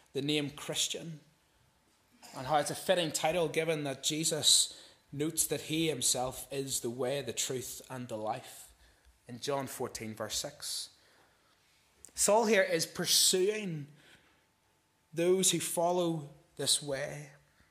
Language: English